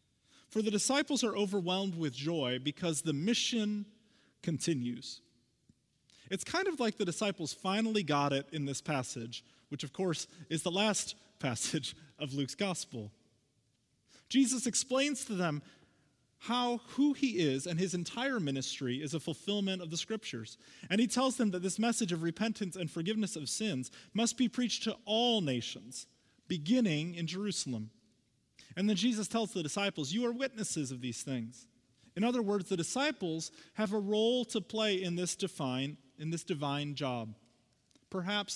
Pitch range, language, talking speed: 135-220 Hz, English, 155 wpm